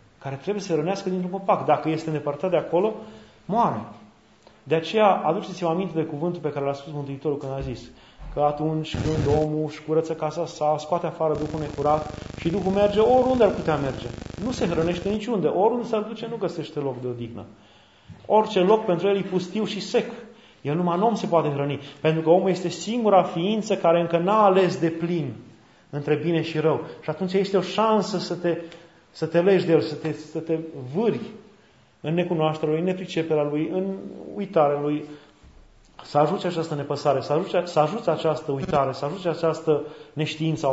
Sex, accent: male, native